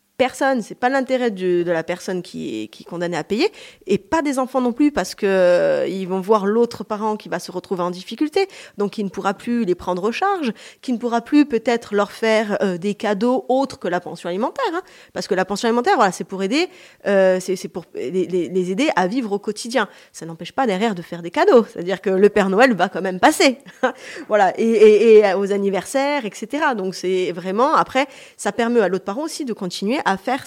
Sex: female